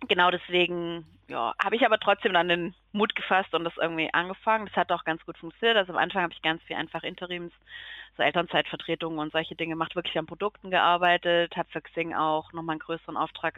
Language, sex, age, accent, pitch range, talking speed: German, female, 30-49, German, 155-175 Hz, 210 wpm